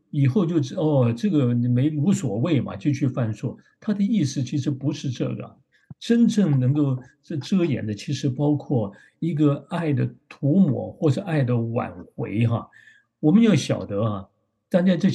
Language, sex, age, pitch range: Chinese, male, 50-69, 120-155 Hz